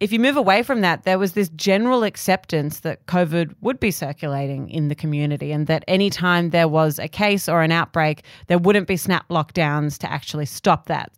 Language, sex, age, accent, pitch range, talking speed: English, female, 30-49, Australian, 155-200 Hz, 210 wpm